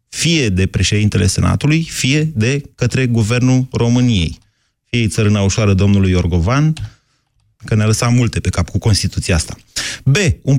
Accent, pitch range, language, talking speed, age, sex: native, 105-135 Hz, Romanian, 140 wpm, 30-49, male